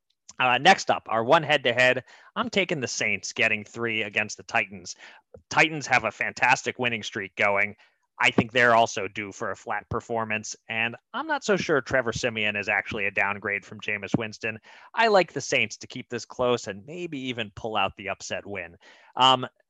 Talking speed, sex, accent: 190 wpm, male, American